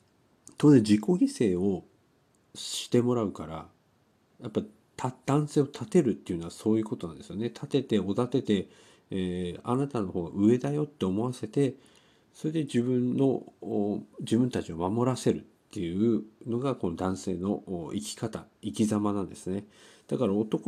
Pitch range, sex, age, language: 100-150 Hz, male, 50-69, Japanese